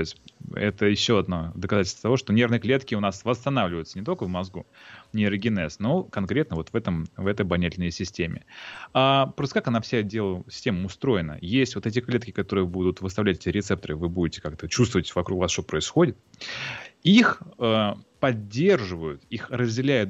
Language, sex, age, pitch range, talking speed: Russian, male, 30-49, 95-130 Hz, 170 wpm